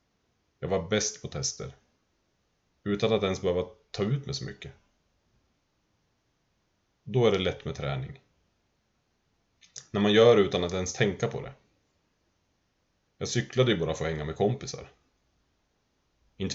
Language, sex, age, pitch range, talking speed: Swedish, male, 30-49, 90-115 Hz, 145 wpm